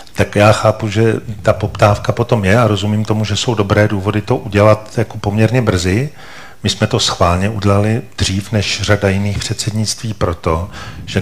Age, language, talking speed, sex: 40-59, Czech, 170 wpm, male